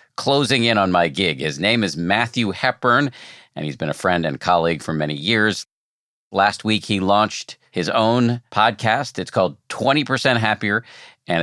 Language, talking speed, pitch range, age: English, 170 wpm, 80-115 Hz, 50-69